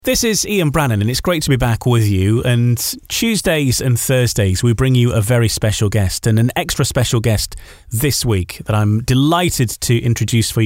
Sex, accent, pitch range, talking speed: male, British, 110-135 Hz, 205 wpm